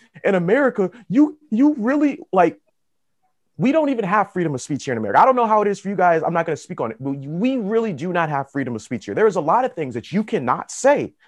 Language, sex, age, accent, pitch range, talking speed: English, male, 30-49, American, 135-210 Hz, 275 wpm